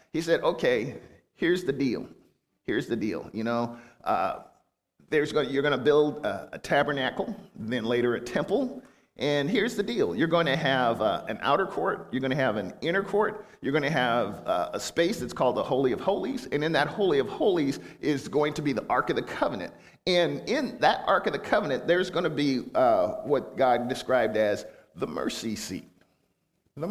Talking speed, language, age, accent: 205 wpm, English, 50-69, American